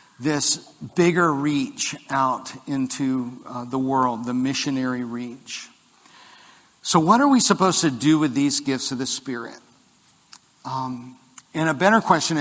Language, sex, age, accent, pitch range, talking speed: English, male, 50-69, American, 135-170 Hz, 140 wpm